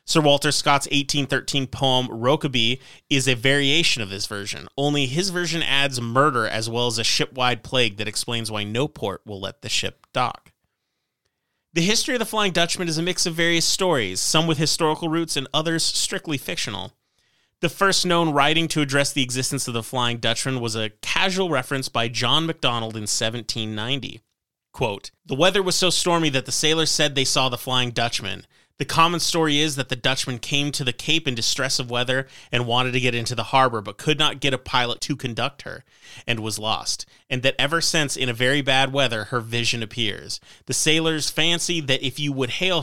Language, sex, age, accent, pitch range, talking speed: English, male, 30-49, American, 120-150 Hz, 200 wpm